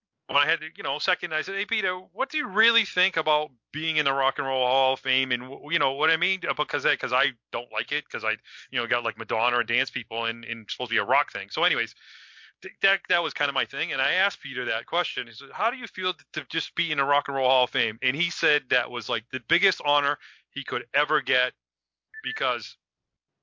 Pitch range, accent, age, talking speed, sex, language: 130-160 Hz, American, 40-59, 265 wpm, male, English